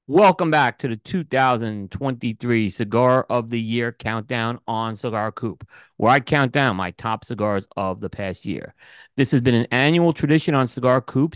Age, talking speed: 40-59, 175 wpm